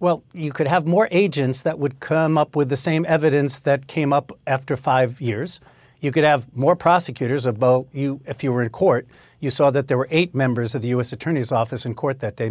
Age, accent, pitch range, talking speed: 50-69, American, 130-160 Hz, 225 wpm